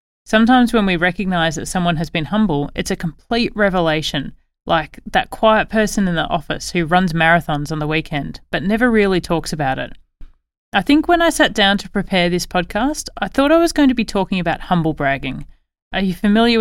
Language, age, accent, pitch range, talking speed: English, 30-49, Australian, 165-220 Hz, 200 wpm